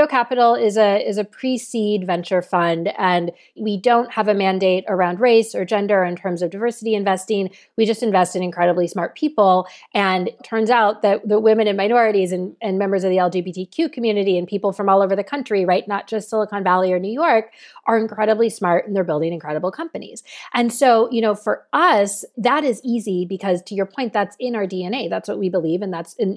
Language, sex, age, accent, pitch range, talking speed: English, female, 30-49, American, 180-220 Hz, 210 wpm